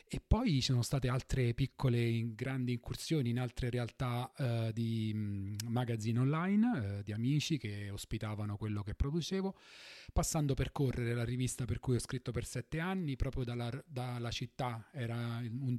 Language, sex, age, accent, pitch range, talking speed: Italian, male, 30-49, native, 110-135 Hz, 160 wpm